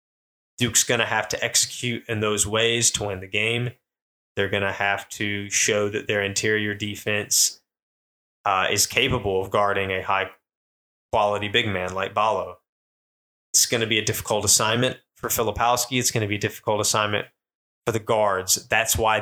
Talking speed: 175 wpm